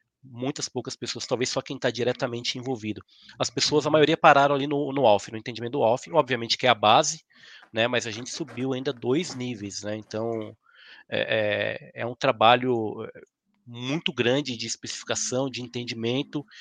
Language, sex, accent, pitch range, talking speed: Portuguese, male, Brazilian, 120-155 Hz, 170 wpm